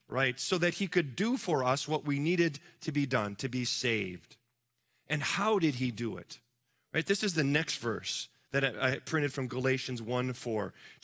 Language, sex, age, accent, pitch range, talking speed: English, male, 40-59, American, 130-180 Hz, 190 wpm